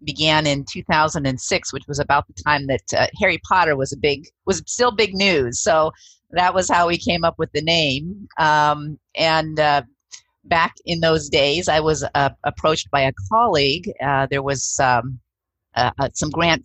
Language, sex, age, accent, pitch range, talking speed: English, female, 40-59, American, 130-165 Hz, 185 wpm